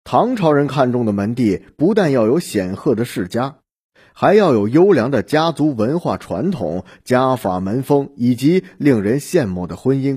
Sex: male